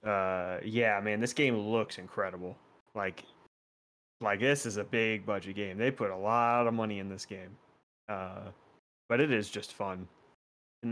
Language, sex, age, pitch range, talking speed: English, male, 20-39, 100-120 Hz, 170 wpm